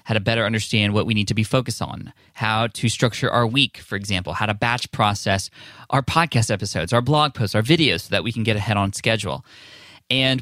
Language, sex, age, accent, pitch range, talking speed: English, male, 20-39, American, 105-130 Hz, 220 wpm